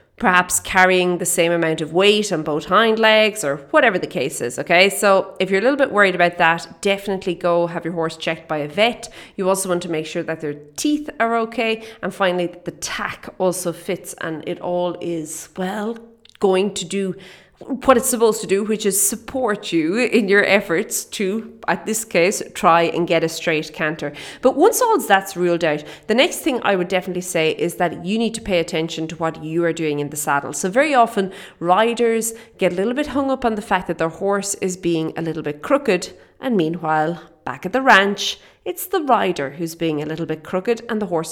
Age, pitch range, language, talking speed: 30-49, 165-220 Hz, English, 220 wpm